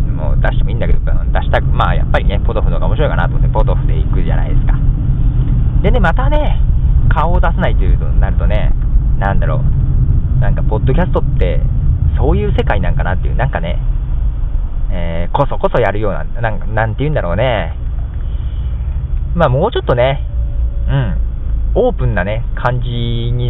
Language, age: Japanese, 20-39